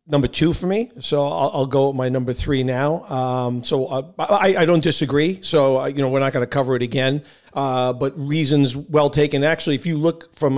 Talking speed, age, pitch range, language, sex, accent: 235 wpm, 40-59, 130-155 Hz, English, male, American